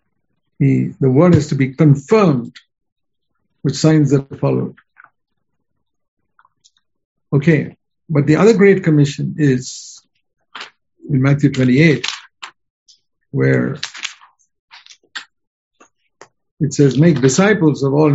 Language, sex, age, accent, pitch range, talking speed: English, male, 60-79, Indian, 130-170 Hz, 90 wpm